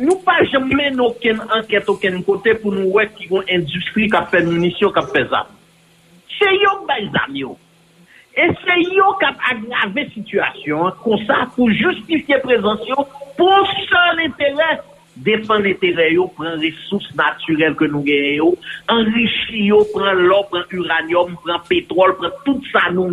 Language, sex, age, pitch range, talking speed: English, male, 50-69, 175-270 Hz, 155 wpm